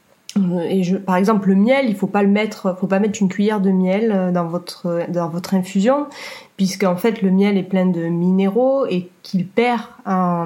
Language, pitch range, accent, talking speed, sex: French, 180-225 Hz, French, 200 wpm, female